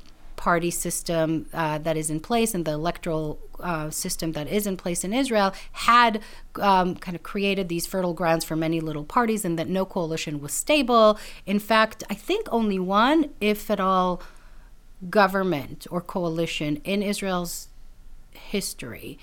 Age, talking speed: 40-59, 160 wpm